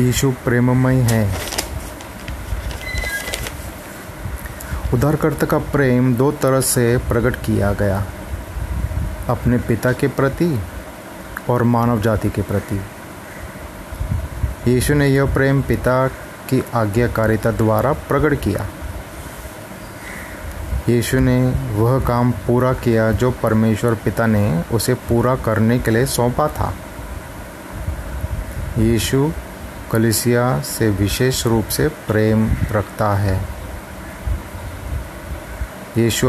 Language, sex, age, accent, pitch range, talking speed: Hindi, male, 30-49, native, 100-125 Hz, 95 wpm